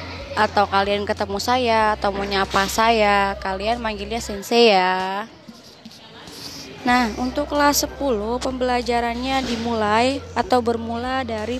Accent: native